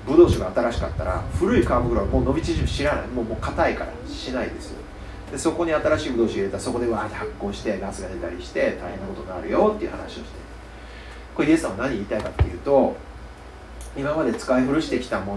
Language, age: Japanese, 40-59